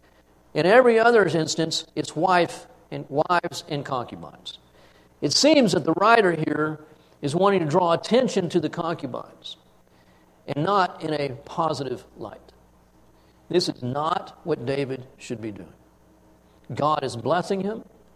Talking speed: 130 wpm